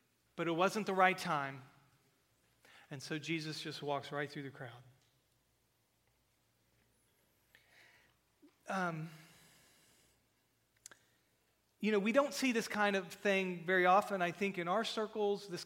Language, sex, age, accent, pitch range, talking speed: English, male, 40-59, American, 150-205 Hz, 125 wpm